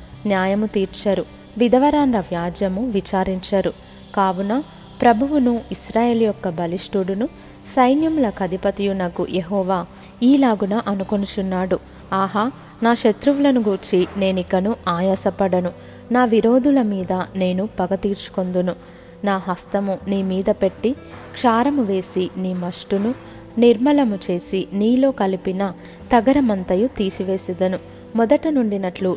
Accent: native